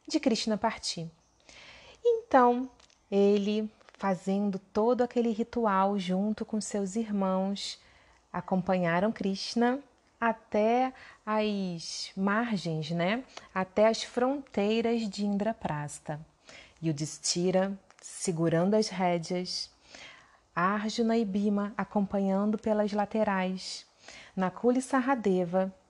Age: 30-49